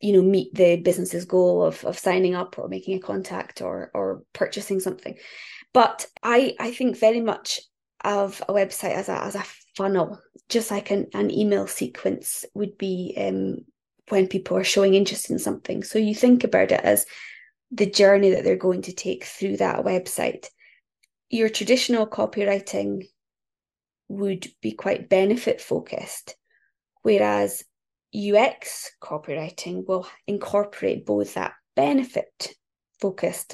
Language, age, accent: English, 20-39, British